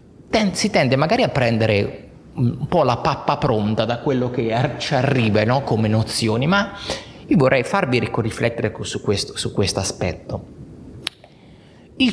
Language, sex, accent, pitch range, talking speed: Italian, male, native, 115-155 Hz, 135 wpm